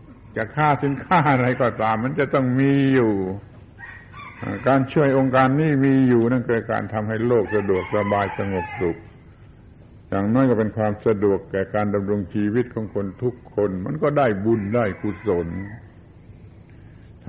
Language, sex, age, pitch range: Thai, male, 70-89, 105-125 Hz